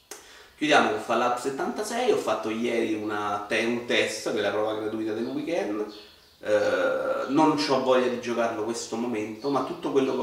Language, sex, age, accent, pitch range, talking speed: Italian, male, 30-49, native, 105-115 Hz, 165 wpm